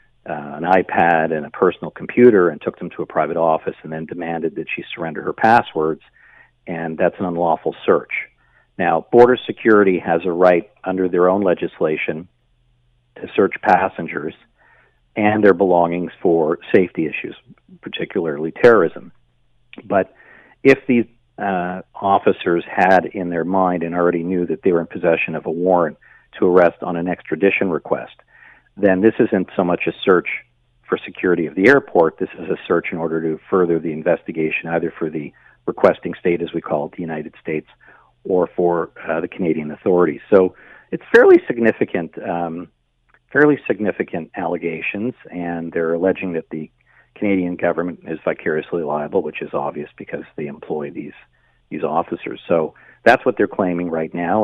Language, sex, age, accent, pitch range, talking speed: English, male, 50-69, American, 80-100 Hz, 165 wpm